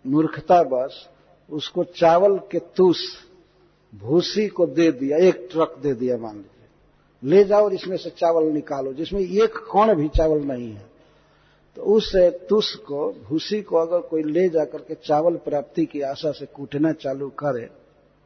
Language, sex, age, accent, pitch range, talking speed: Hindi, male, 60-79, native, 145-180 Hz, 155 wpm